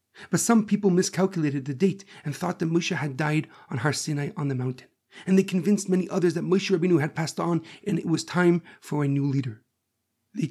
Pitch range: 150-175 Hz